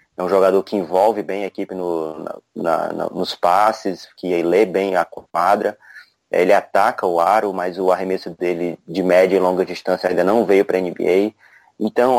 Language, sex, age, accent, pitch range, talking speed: Portuguese, male, 20-39, Brazilian, 90-110 Hz, 185 wpm